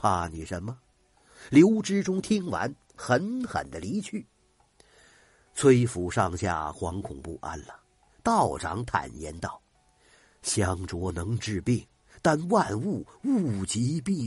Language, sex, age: Chinese, male, 50-69